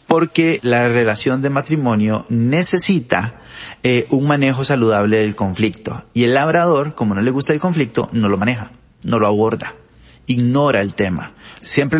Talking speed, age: 155 wpm, 30-49